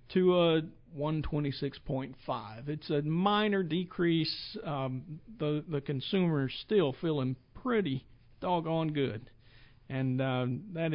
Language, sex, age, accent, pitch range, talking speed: English, male, 50-69, American, 135-165 Hz, 110 wpm